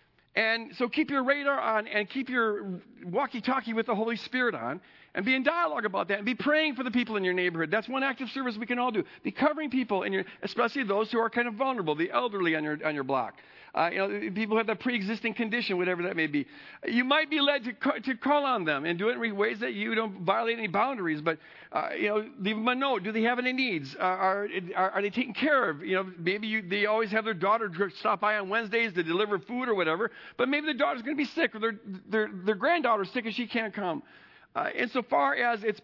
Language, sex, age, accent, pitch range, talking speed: English, male, 50-69, American, 175-240 Hz, 255 wpm